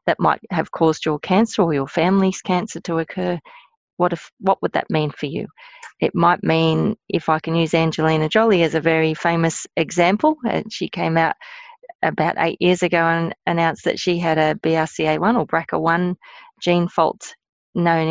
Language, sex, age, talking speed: English, female, 30-49, 180 wpm